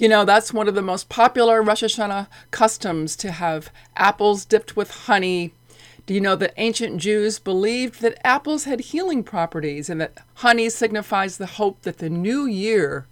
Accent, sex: American, female